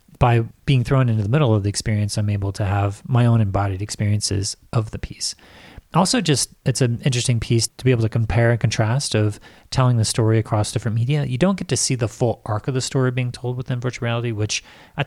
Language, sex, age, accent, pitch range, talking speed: English, male, 30-49, American, 105-120 Hz, 230 wpm